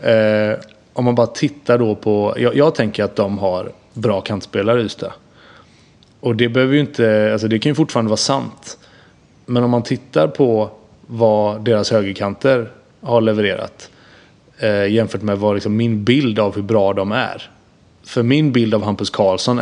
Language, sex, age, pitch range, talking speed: Swedish, male, 20-39, 100-120 Hz, 175 wpm